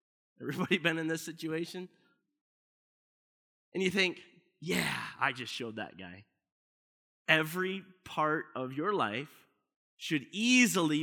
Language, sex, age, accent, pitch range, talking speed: English, male, 30-49, American, 170-225 Hz, 115 wpm